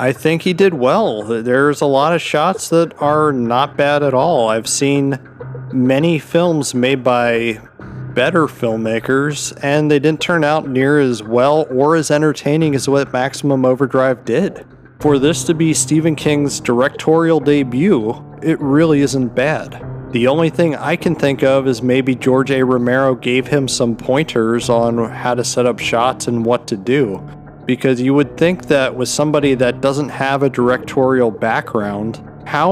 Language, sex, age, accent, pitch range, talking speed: English, male, 40-59, American, 120-145 Hz, 170 wpm